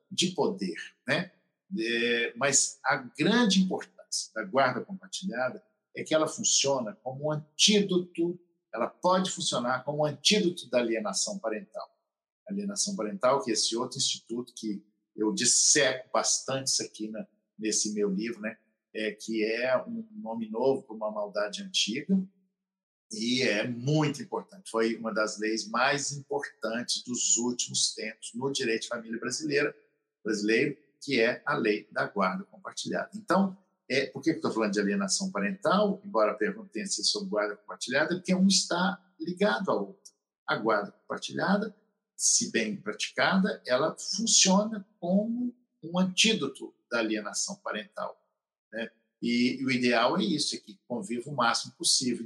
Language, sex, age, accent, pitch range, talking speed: Portuguese, male, 50-69, Brazilian, 115-190 Hz, 150 wpm